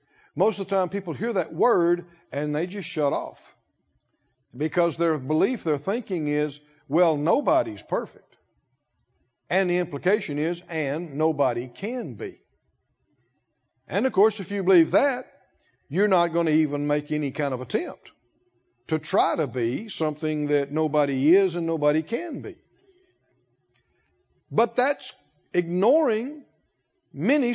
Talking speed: 135 wpm